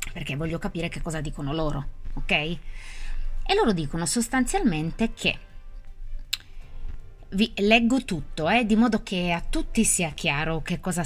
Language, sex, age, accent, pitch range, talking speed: Italian, female, 20-39, native, 140-220 Hz, 140 wpm